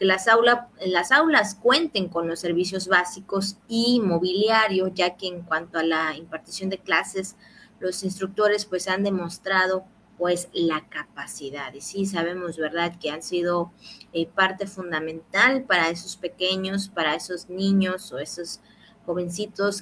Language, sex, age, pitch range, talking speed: Spanish, female, 30-49, 170-200 Hz, 145 wpm